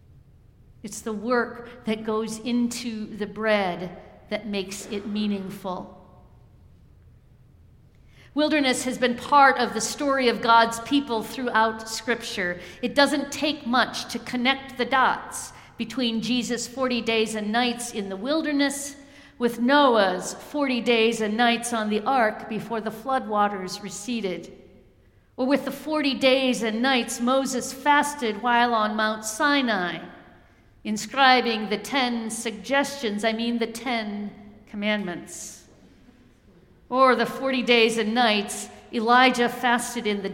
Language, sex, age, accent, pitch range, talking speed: English, female, 50-69, American, 205-245 Hz, 130 wpm